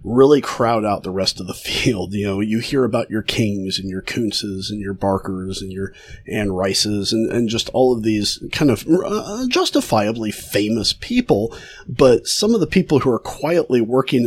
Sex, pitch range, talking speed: male, 105-135 Hz, 195 wpm